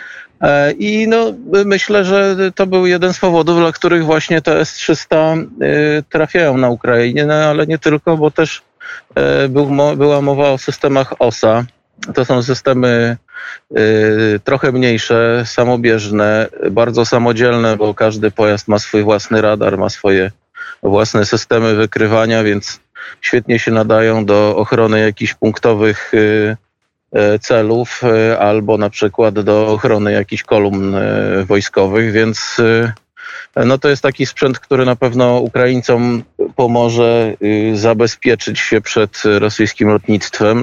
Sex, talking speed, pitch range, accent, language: male, 115 wpm, 110-135 Hz, native, Polish